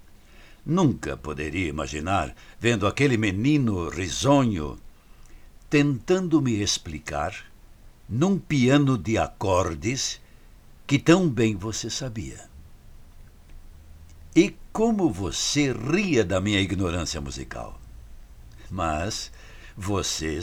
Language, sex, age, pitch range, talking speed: Portuguese, male, 60-79, 85-140 Hz, 85 wpm